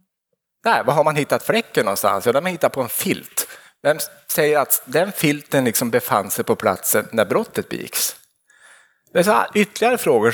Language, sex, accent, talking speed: Swedish, male, Norwegian, 190 wpm